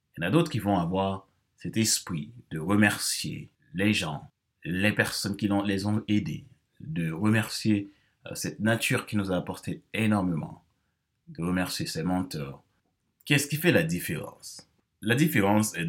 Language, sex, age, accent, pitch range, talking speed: French, male, 30-49, French, 90-115 Hz, 160 wpm